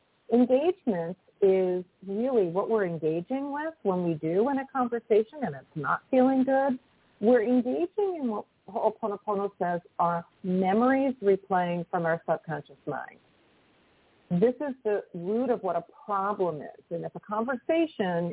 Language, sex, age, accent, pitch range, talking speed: English, female, 40-59, American, 185-255 Hz, 145 wpm